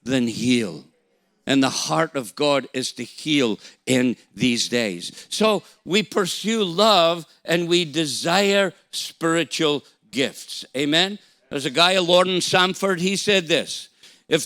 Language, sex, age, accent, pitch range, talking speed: English, male, 50-69, American, 135-180 Hz, 140 wpm